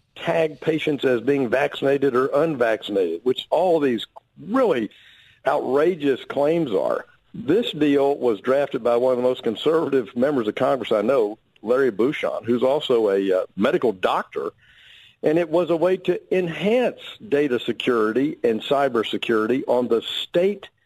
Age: 50-69